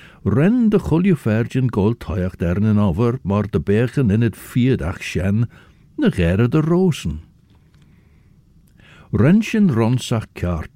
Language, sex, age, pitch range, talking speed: English, male, 60-79, 95-135 Hz, 155 wpm